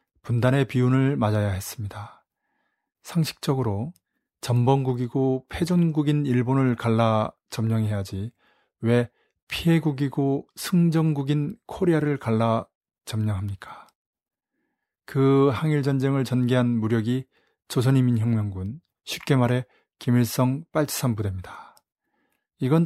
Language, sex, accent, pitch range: Korean, male, native, 110-140 Hz